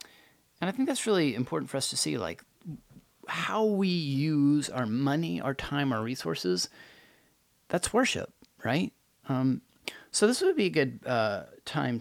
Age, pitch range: 30-49, 115-150 Hz